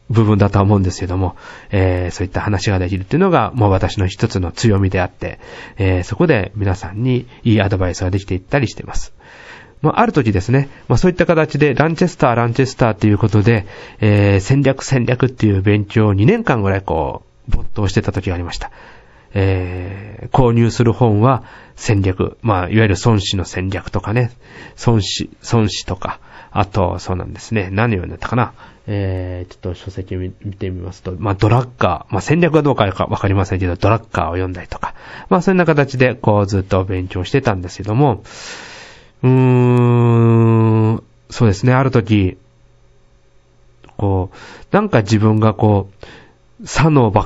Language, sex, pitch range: Japanese, male, 95-120 Hz